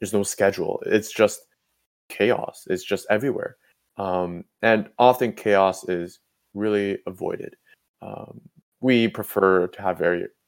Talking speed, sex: 125 wpm, male